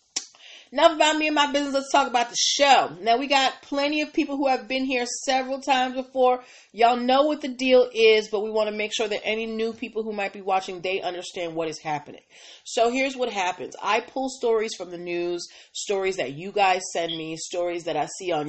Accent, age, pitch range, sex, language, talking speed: American, 30-49, 170-230 Hz, female, English, 225 wpm